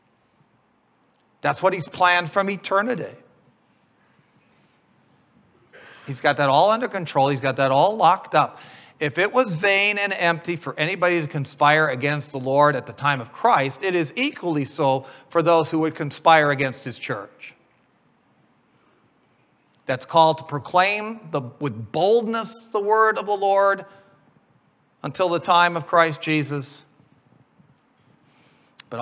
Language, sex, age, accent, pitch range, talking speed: English, male, 40-59, American, 135-175 Hz, 135 wpm